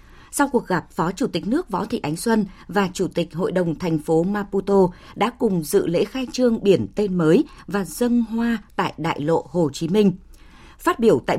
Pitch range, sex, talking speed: 170-220 Hz, female, 210 wpm